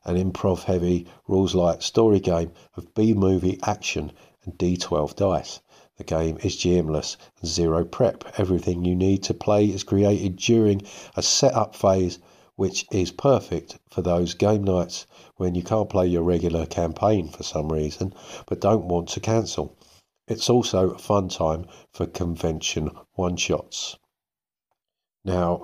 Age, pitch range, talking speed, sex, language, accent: 50-69, 85-100 Hz, 145 wpm, male, English, British